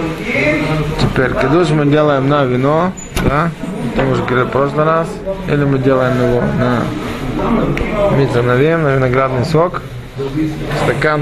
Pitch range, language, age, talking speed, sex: 125-155 Hz, Russian, 20-39, 120 wpm, male